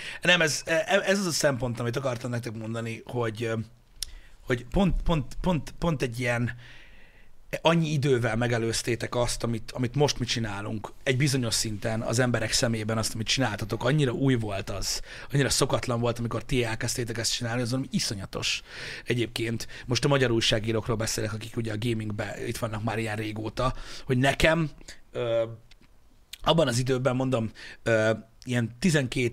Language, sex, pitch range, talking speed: Hungarian, male, 115-155 Hz, 150 wpm